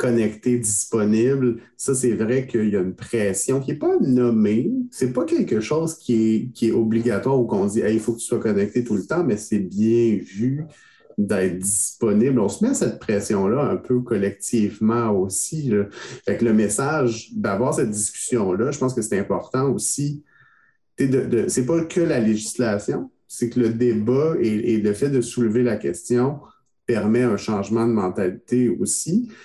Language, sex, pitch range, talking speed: French, male, 105-130 Hz, 190 wpm